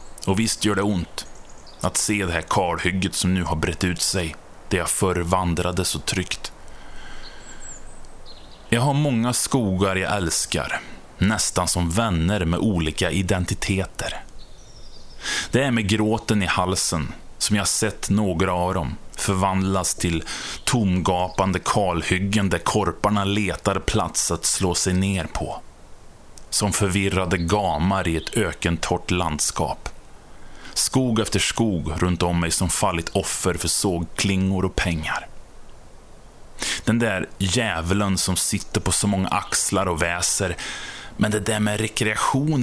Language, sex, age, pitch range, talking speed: Swedish, male, 20-39, 90-110 Hz, 130 wpm